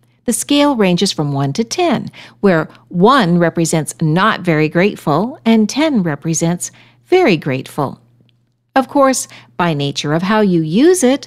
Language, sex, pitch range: English, female, 155-240 Hz